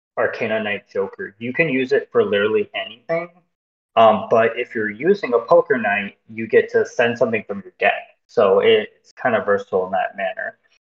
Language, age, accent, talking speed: English, 20-39, American, 190 wpm